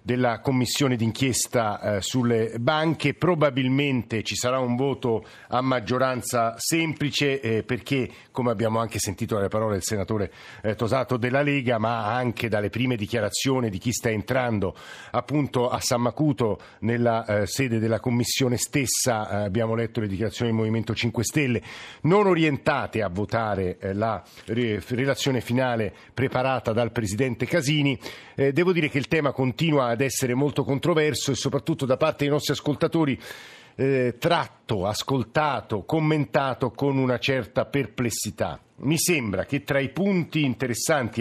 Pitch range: 115-145 Hz